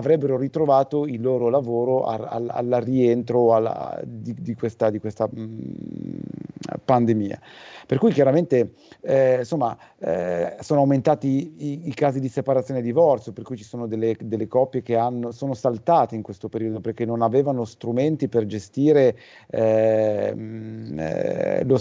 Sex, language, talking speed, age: male, Italian, 150 wpm, 40-59